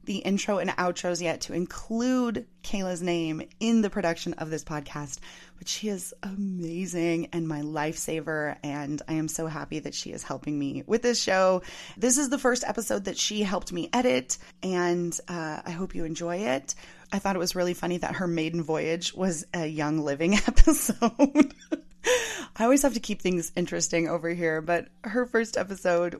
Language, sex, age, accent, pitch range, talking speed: English, female, 30-49, American, 160-195 Hz, 185 wpm